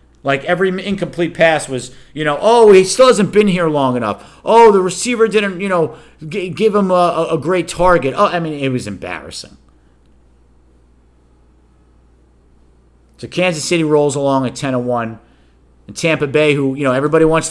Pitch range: 105-150 Hz